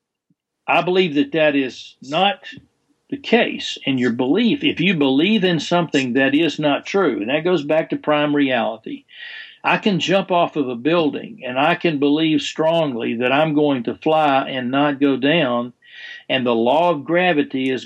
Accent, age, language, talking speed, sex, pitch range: American, 60-79, English, 180 wpm, male, 130-160 Hz